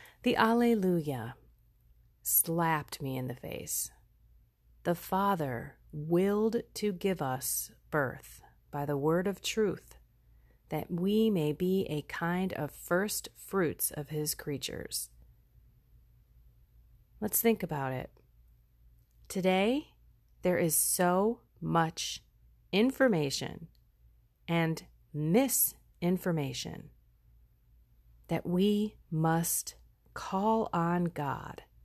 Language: English